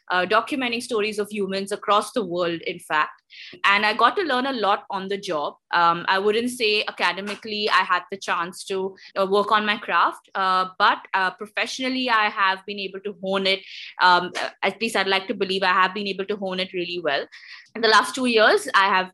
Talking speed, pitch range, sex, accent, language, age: 215 wpm, 180-215 Hz, female, Indian, English, 20-39